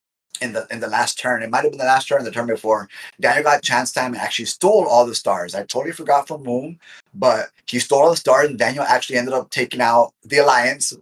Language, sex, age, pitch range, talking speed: English, male, 30-49, 110-140 Hz, 255 wpm